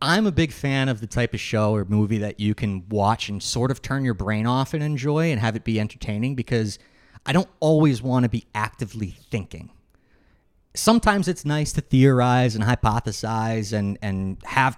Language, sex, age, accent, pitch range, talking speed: English, male, 30-49, American, 105-140 Hz, 195 wpm